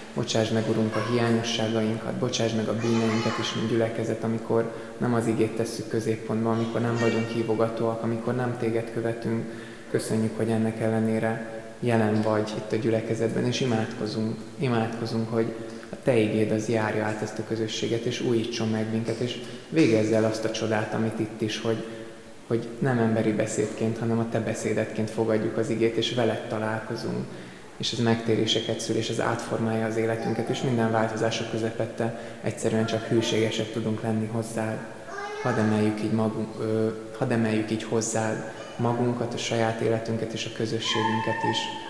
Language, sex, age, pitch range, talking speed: Hungarian, male, 20-39, 110-115 Hz, 160 wpm